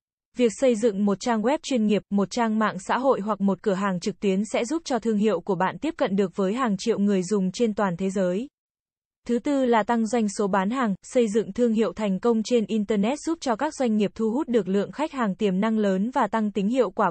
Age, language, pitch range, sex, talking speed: 20-39, Vietnamese, 205-245 Hz, female, 255 wpm